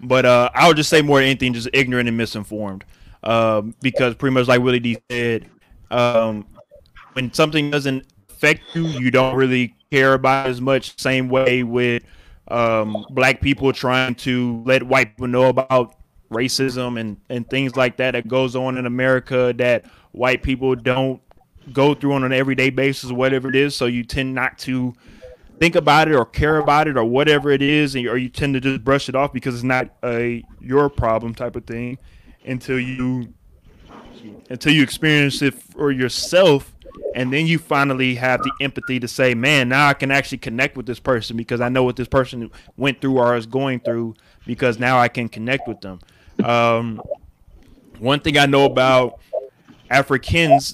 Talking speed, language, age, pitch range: 185 wpm, English, 20-39, 120-135 Hz